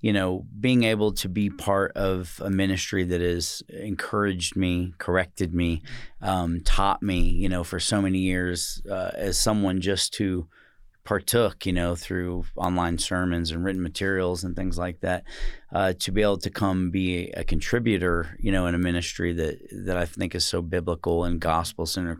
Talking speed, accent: 170 wpm, American